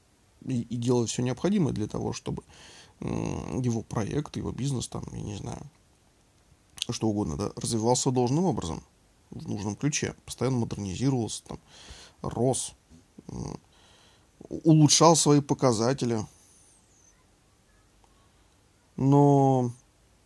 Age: 20-39